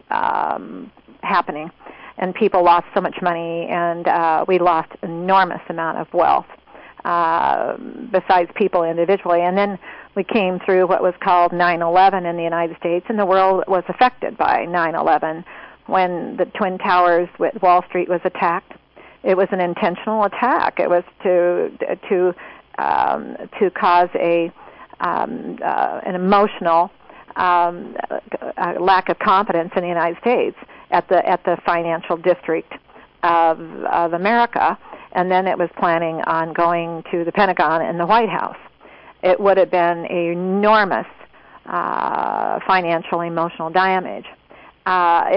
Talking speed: 145 wpm